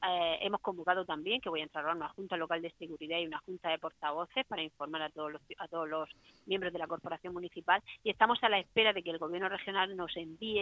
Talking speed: 235 wpm